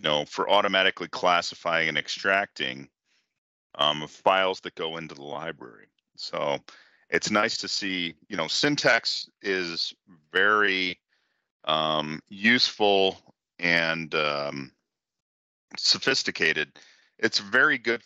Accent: American